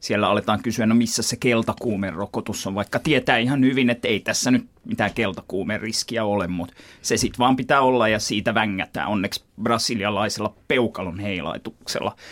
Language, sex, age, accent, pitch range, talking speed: Finnish, male, 30-49, native, 110-155 Hz, 165 wpm